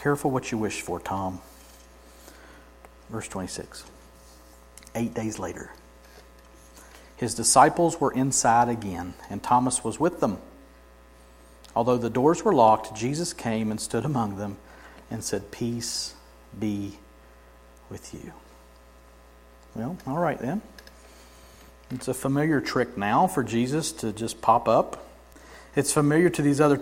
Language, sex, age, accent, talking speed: English, male, 50-69, American, 130 wpm